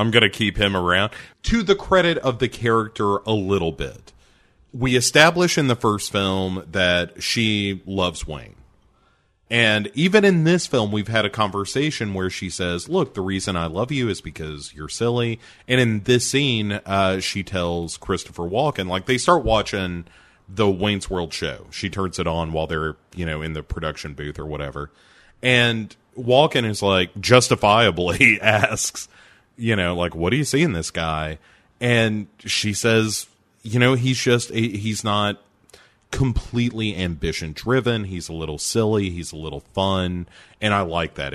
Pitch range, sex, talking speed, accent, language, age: 85-115 Hz, male, 175 wpm, American, English, 30-49